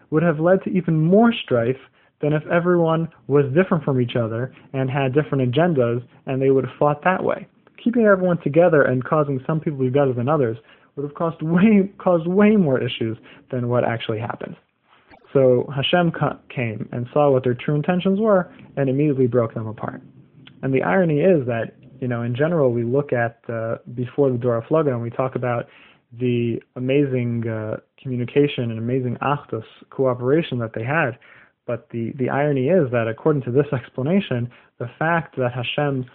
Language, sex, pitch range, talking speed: English, male, 120-150 Hz, 185 wpm